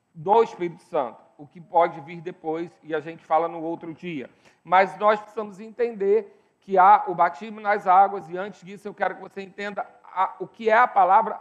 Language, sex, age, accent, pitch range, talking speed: Portuguese, male, 40-59, Brazilian, 195-245 Hz, 200 wpm